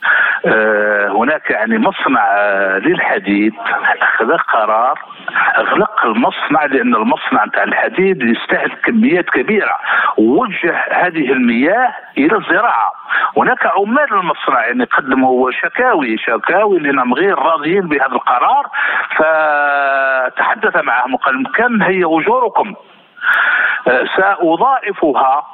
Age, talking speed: 50-69, 90 wpm